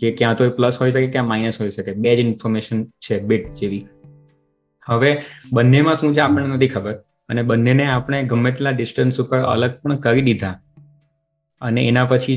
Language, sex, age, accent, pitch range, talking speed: Gujarati, male, 20-39, native, 110-130 Hz, 125 wpm